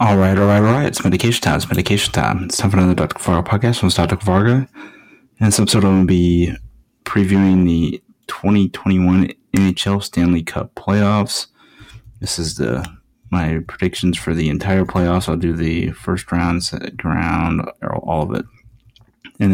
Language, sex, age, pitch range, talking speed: English, male, 30-49, 90-100 Hz, 170 wpm